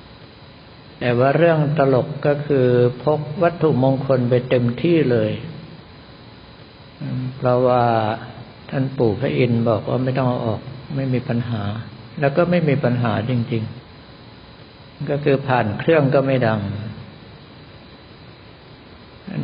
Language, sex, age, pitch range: Thai, male, 60-79, 115-135 Hz